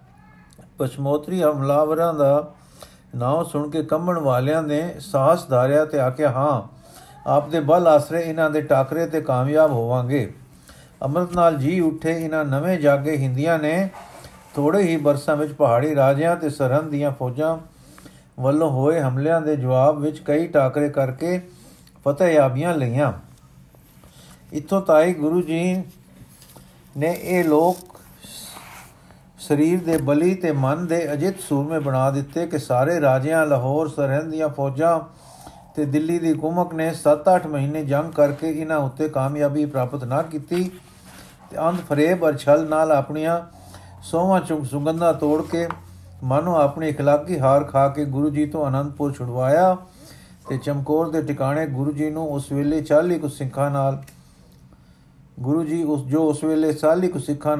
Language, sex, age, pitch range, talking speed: Punjabi, male, 50-69, 135-160 Hz, 140 wpm